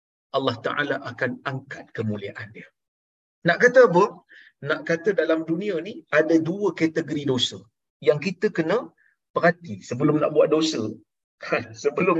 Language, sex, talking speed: Malayalam, male, 135 wpm